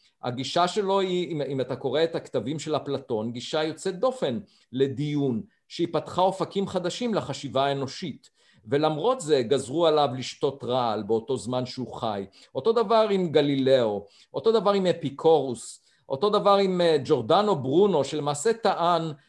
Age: 50-69